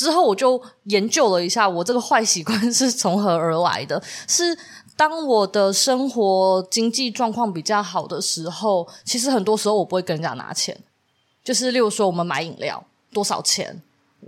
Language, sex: Chinese, female